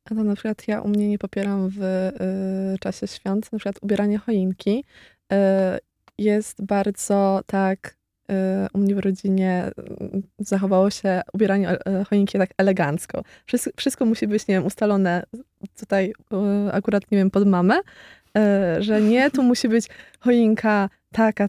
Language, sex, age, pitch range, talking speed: Polish, female, 20-39, 190-225 Hz, 140 wpm